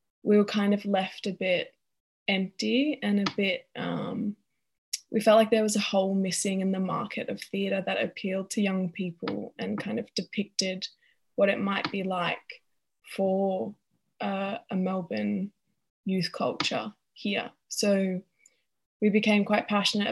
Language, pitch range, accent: English, 185-215 Hz, Australian